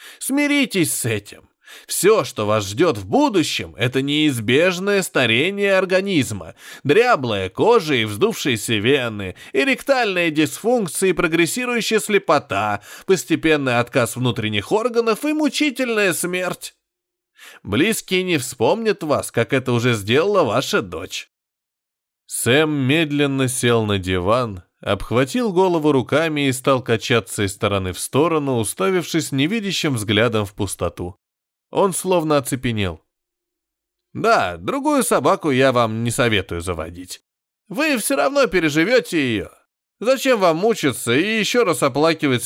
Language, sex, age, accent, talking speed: Russian, male, 20-39, native, 115 wpm